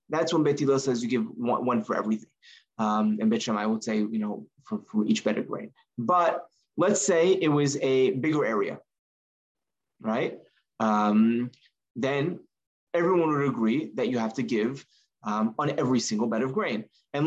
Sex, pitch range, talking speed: male, 120-155 Hz, 175 wpm